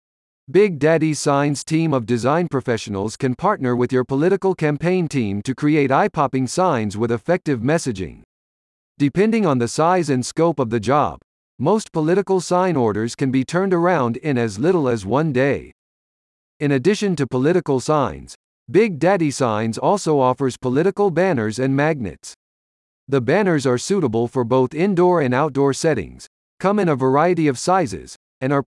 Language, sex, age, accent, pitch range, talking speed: English, male, 50-69, American, 125-175 Hz, 160 wpm